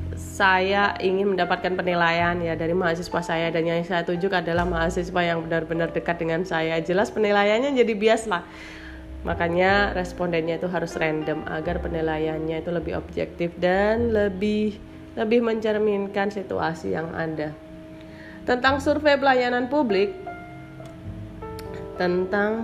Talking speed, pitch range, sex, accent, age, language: 120 wpm, 165-215 Hz, female, native, 30-49, Indonesian